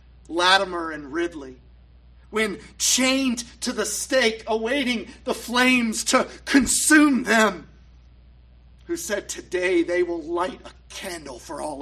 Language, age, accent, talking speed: English, 40-59, American, 120 wpm